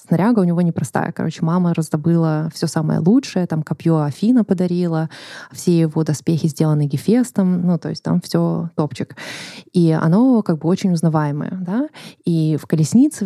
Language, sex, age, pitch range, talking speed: Russian, female, 20-39, 160-190 Hz, 160 wpm